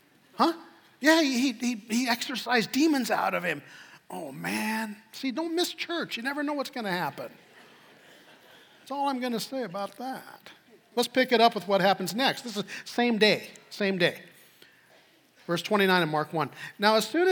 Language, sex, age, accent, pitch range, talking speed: English, male, 50-69, American, 155-215 Hz, 185 wpm